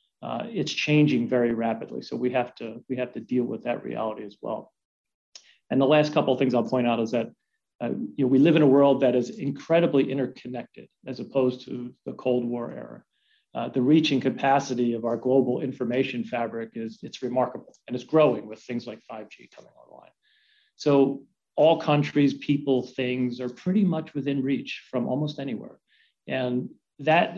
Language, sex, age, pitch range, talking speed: English, male, 40-59, 125-145 Hz, 185 wpm